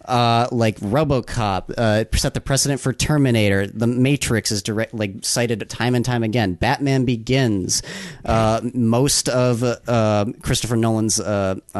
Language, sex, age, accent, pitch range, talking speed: English, male, 40-59, American, 105-130 Hz, 135 wpm